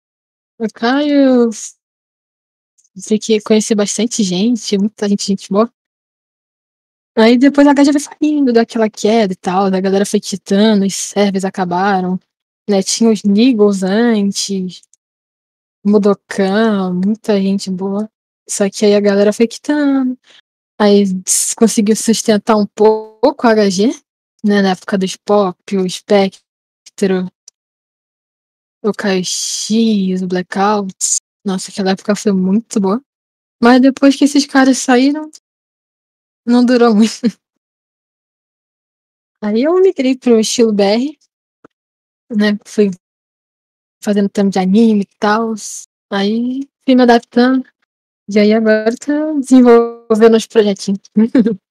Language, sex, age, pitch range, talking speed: Portuguese, female, 10-29, 200-235 Hz, 120 wpm